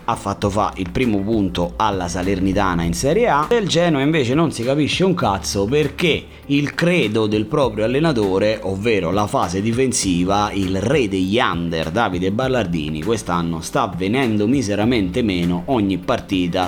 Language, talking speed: Italian, 155 wpm